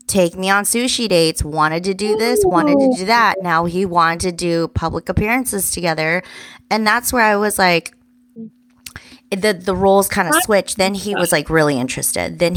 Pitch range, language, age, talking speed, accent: 160-205 Hz, English, 20-39, 190 wpm, American